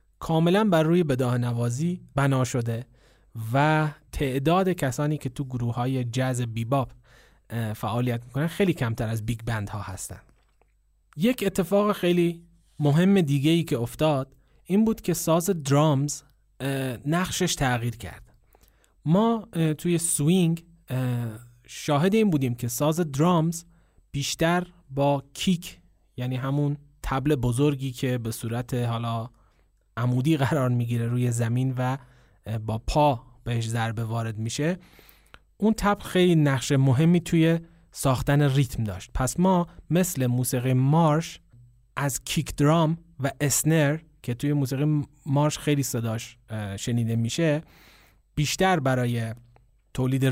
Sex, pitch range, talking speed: male, 120-160 Hz, 125 wpm